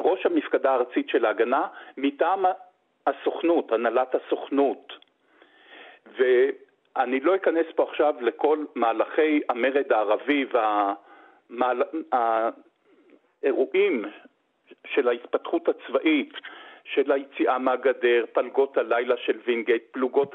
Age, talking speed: 50-69, 90 wpm